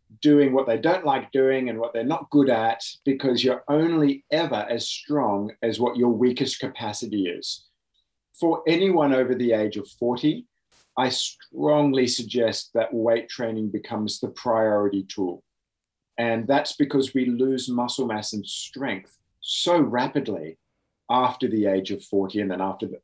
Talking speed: 160 wpm